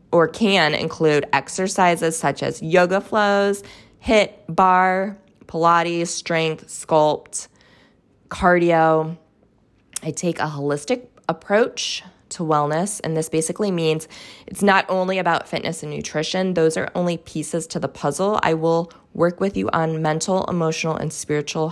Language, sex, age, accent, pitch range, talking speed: English, female, 20-39, American, 155-185 Hz, 135 wpm